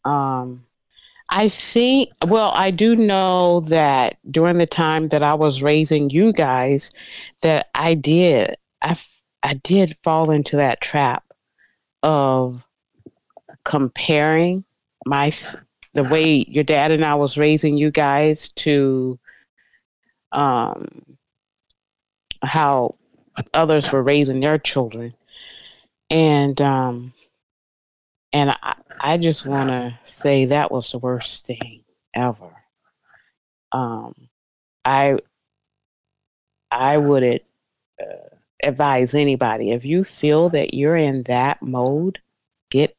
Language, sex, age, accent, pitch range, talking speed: English, female, 30-49, American, 130-155 Hz, 110 wpm